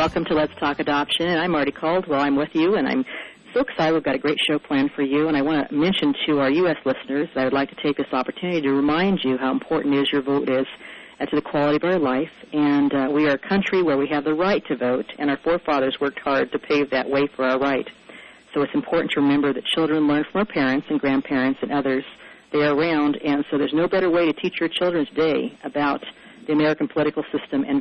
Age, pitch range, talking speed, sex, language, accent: 50-69, 140-165 Hz, 255 wpm, female, English, American